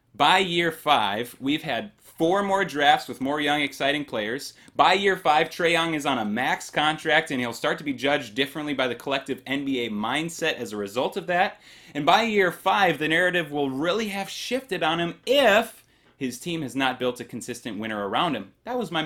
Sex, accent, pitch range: male, American, 125-170 Hz